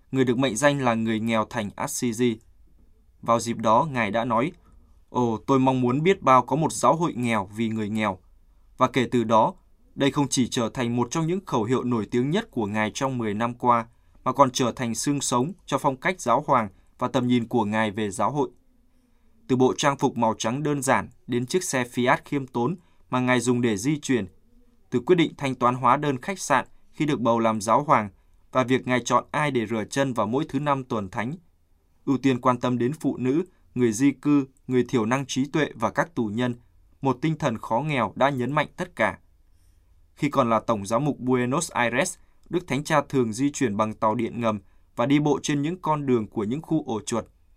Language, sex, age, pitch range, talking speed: Vietnamese, male, 20-39, 110-140 Hz, 225 wpm